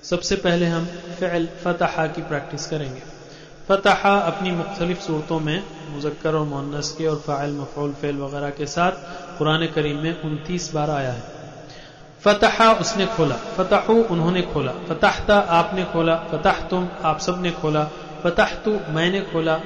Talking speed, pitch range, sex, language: 150 wpm, 160-200 Hz, male, Hindi